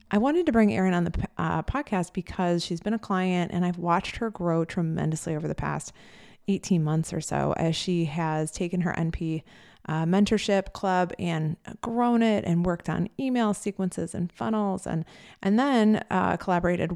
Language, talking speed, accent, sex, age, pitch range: English, 180 wpm, American, female, 30-49, 165-195 Hz